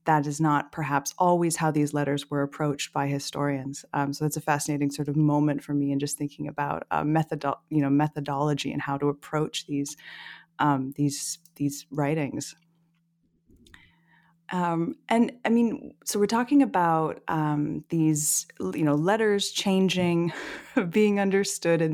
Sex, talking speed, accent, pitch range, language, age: female, 155 wpm, American, 150-180 Hz, English, 30-49